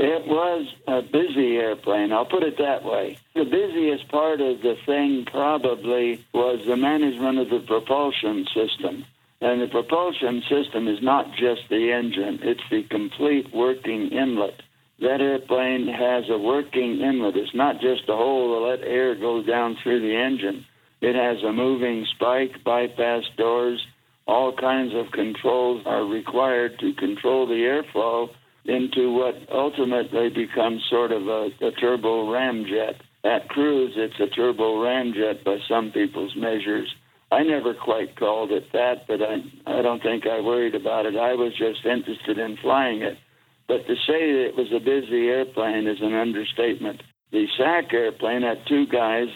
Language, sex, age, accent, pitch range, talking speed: English, male, 60-79, American, 115-135 Hz, 160 wpm